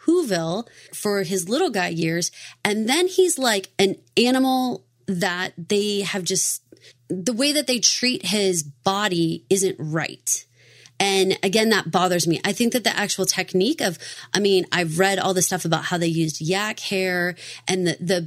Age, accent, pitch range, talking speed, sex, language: 30-49, American, 170-200 Hz, 175 wpm, female, English